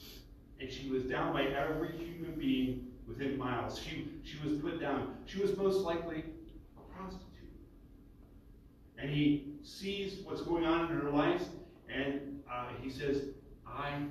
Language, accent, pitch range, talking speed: English, American, 125-175 Hz, 150 wpm